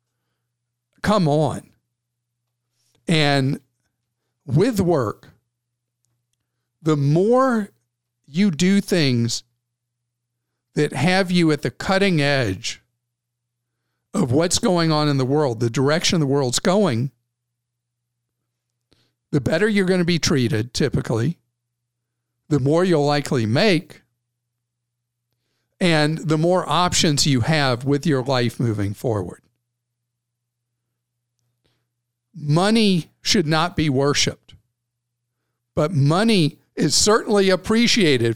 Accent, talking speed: American, 100 wpm